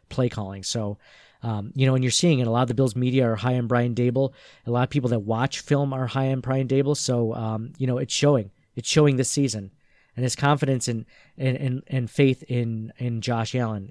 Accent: American